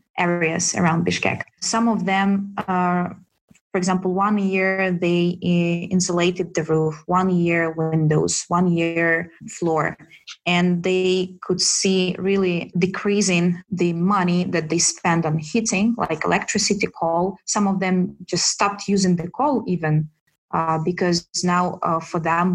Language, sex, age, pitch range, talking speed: English, female, 20-39, 170-190 Hz, 140 wpm